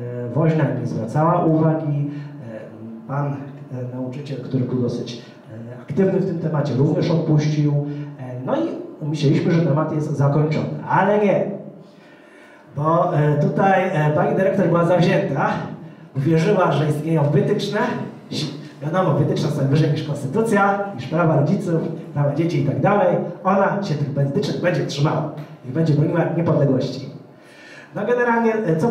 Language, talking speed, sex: Polish, 125 wpm, male